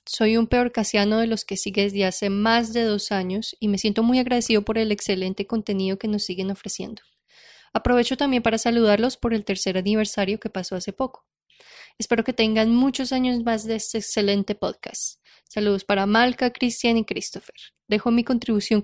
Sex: female